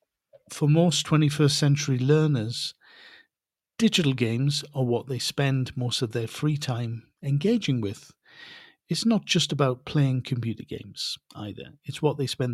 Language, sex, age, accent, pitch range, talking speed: English, male, 50-69, British, 120-145 Hz, 145 wpm